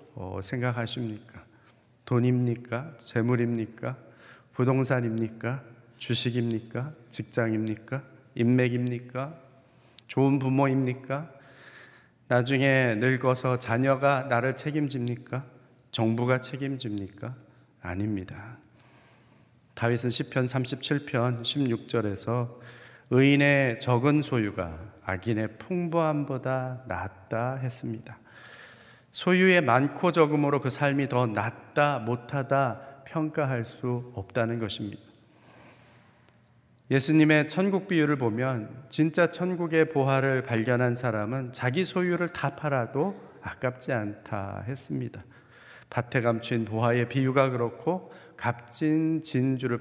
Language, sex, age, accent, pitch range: Korean, male, 40-59, native, 115-140 Hz